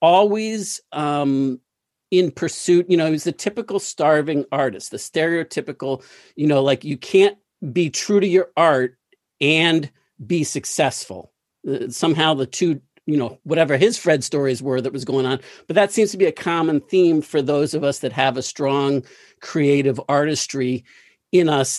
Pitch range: 135-170 Hz